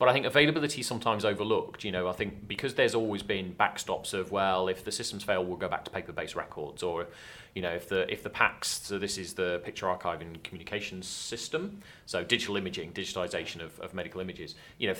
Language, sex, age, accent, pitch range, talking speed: English, male, 30-49, British, 90-110 Hz, 230 wpm